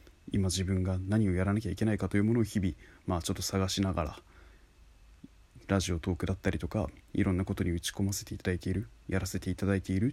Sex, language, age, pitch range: male, Japanese, 20-39, 90-110 Hz